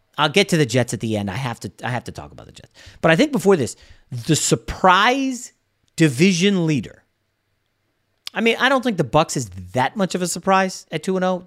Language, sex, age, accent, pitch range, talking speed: English, male, 40-59, American, 120-185 Hz, 220 wpm